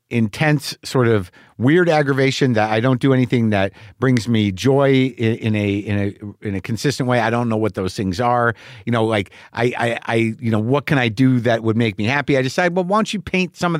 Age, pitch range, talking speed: 50-69, 110-140 Hz, 245 wpm